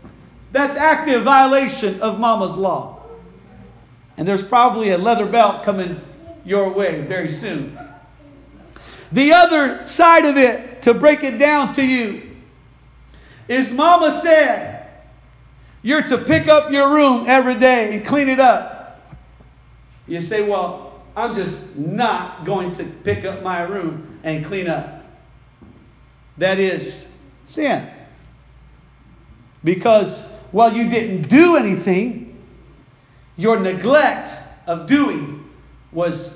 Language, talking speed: English, 120 wpm